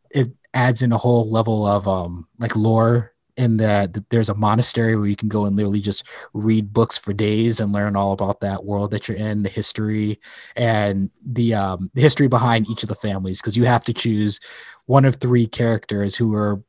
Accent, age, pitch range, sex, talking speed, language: American, 20-39, 105-125 Hz, male, 210 wpm, English